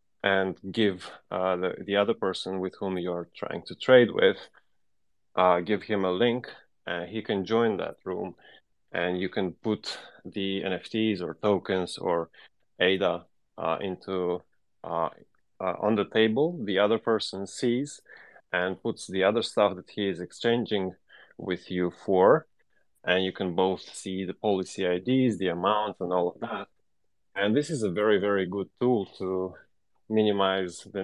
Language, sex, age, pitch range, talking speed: English, male, 30-49, 90-105 Hz, 160 wpm